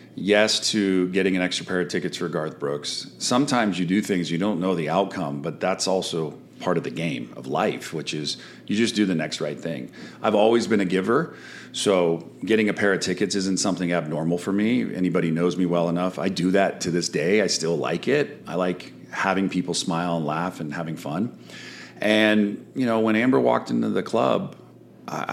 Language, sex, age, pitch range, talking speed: English, male, 40-59, 85-100 Hz, 210 wpm